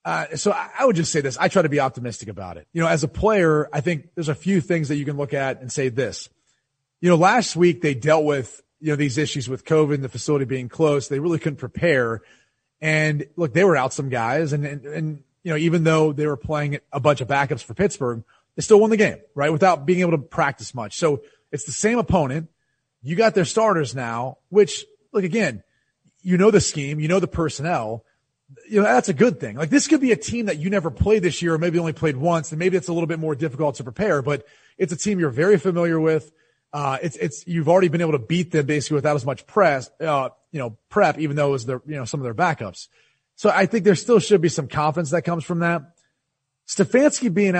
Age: 30-49